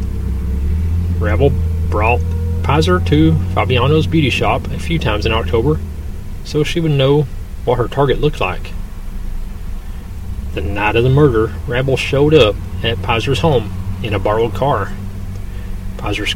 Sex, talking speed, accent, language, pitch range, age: male, 135 wpm, American, English, 90-125 Hz, 30-49